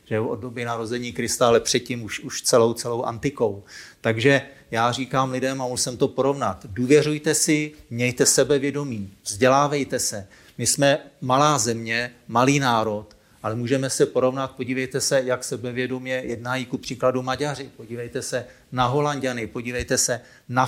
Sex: male